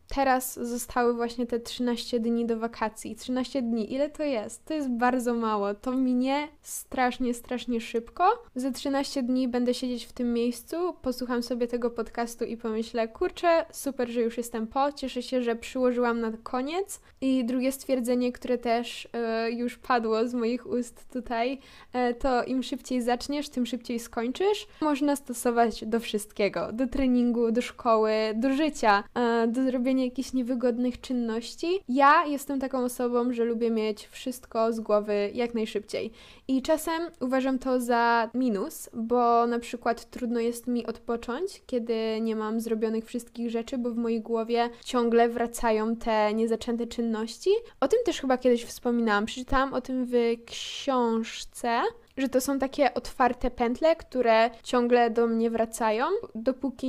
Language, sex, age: Polish, female, 10-29